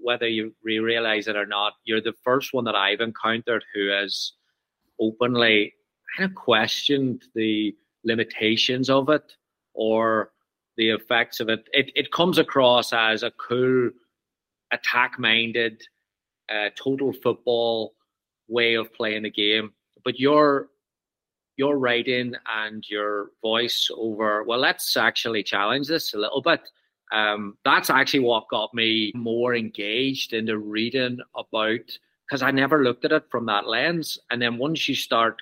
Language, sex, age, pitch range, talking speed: English, male, 30-49, 110-130 Hz, 145 wpm